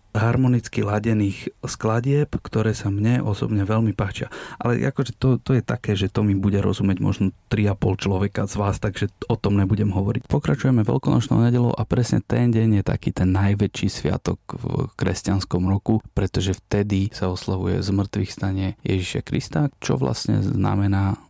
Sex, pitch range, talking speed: male, 100-120 Hz, 160 wpm